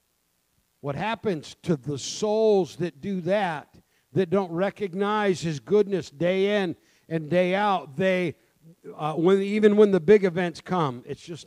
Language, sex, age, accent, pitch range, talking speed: English, male, 50-69, American, 150-205 Hz, 150 wpm